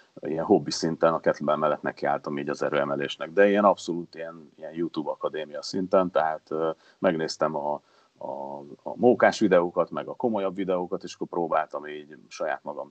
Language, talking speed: Hungarian, 165 wpm